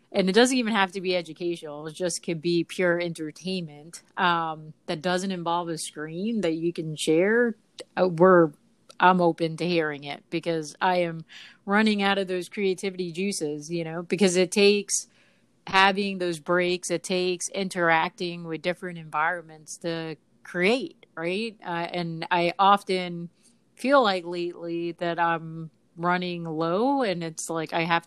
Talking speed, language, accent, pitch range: 155 wpm, English, American, 165-205 Hz